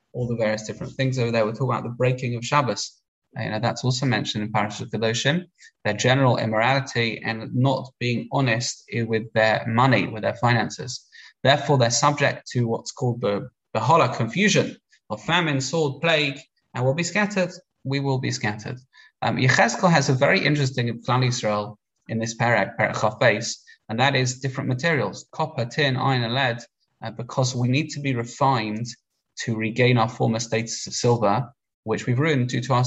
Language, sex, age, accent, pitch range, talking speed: English, male, 20-39, British, 115-135 Hz, 185 wpm